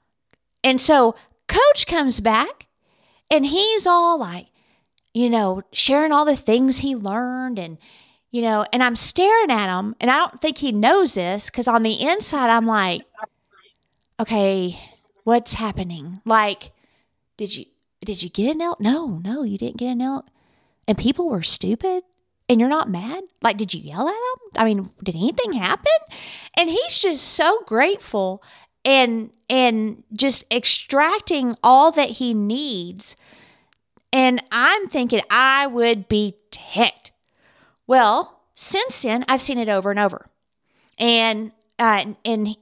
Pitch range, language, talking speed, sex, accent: 210-275 Hz, English, 150 wpm, female, American